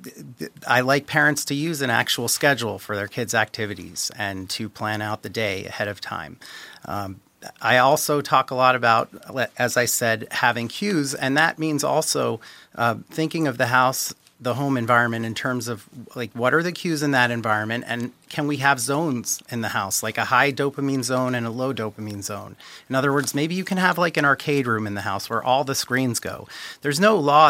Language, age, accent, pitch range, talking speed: English, 30-49, American, 110-140 Hz, 210 wpm